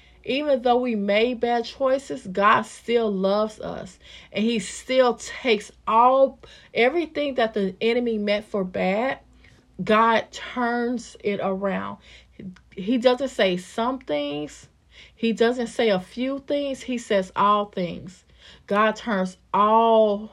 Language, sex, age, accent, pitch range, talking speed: English, female, 30-49, American, 185-225 Hz, 130 wpm